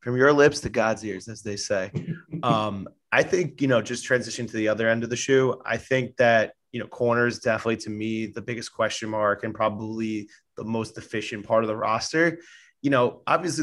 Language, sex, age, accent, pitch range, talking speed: English, male, 20-39, American, 110-125 Hz, 210 wpm